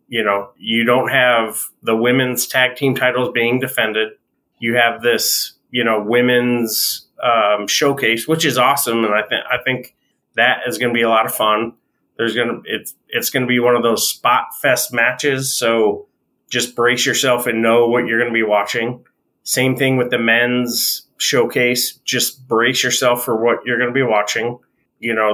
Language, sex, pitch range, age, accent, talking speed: English, male, 115-130 Hz, 30-49, American, 190 wpm